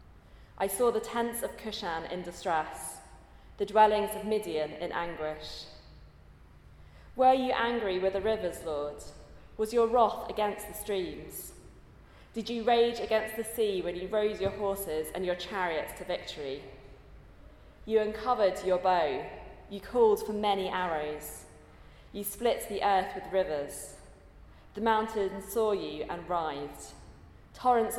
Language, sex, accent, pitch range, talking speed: English, female, British, 155-210 Hz, 140 wpm